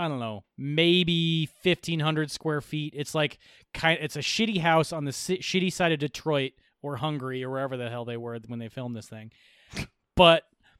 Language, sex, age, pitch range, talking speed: English, male, 20-39, 135-190 Hz, 195 wpm